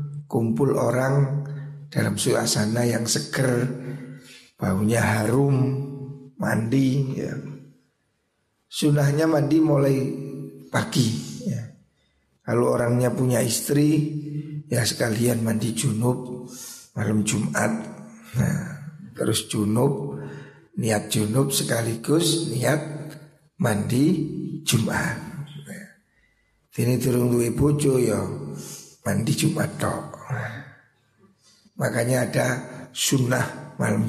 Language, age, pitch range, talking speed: Indonesian, 60-79, 115-150 Hz, 80 wpm